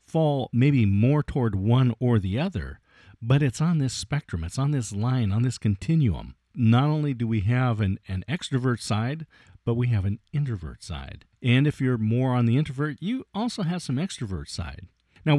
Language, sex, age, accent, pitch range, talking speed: English, male, 50-69, American, 105-145 Hz, 190 wpm